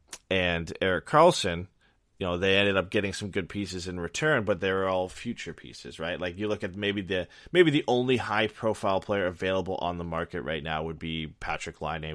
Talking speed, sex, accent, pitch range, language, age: 205 wpm, male, American, 80-95 Hz, English, 20-39